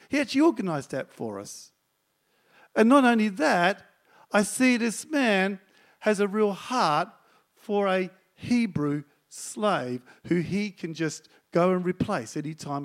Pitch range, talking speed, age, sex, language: 165-240 Hz, 145 wpm, 50-69, male, English